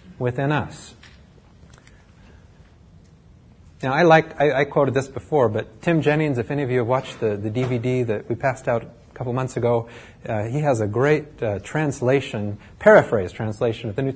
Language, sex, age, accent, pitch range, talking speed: English, male, 30-49, American, 115-165 Hz, 180 wpm